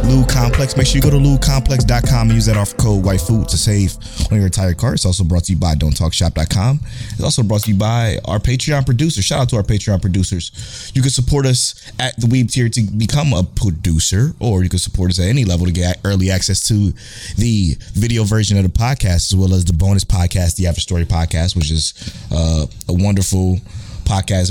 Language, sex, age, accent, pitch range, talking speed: English, male, 20-39, American, 95-120 Hz, 220 wpm